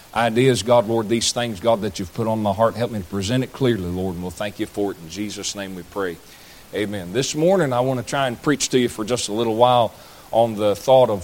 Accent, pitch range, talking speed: American, 105-135 Hz, 265 wpm